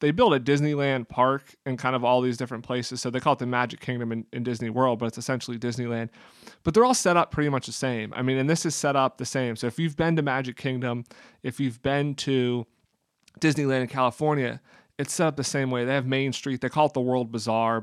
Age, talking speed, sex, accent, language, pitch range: 30-49, 250 wpm, male, American, English, 120-145 Hz